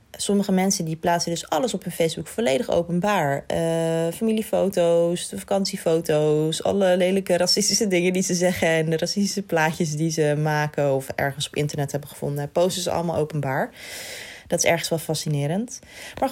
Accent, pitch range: Dutch, 155-185 Hz